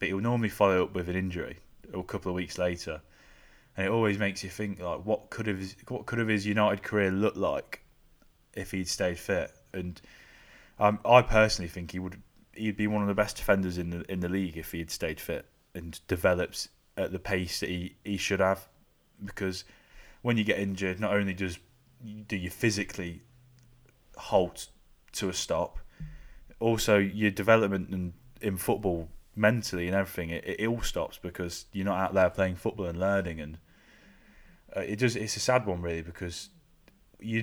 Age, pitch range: 20-39, 90-105 Hz